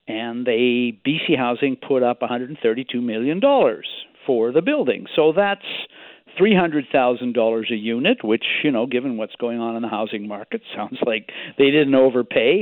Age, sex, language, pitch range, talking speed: 60-79, male, English, 120-180 Hz, 150 wpm